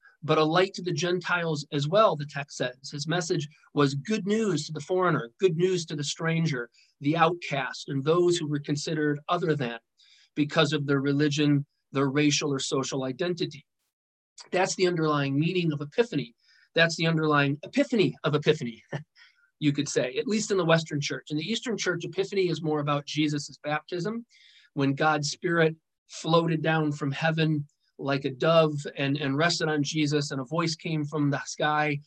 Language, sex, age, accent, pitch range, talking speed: English, male, 40-59, American, 140-165 Hz, 180 wpm